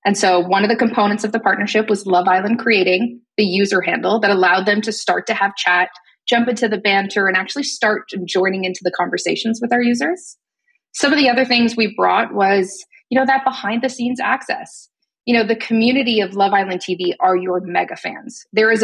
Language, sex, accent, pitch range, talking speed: English, female, American, 200-260 Hz, 215 wpm